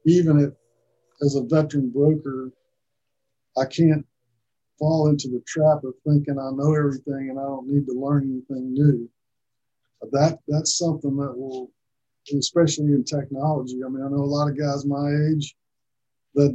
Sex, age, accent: male, 50-69, American